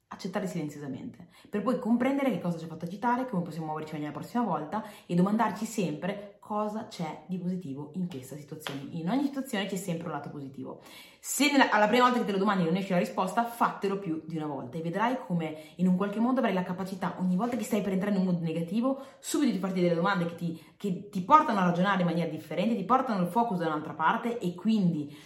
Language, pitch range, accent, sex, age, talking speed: Italian, 170-230 Hz, native, female, 20-39, 235 wpm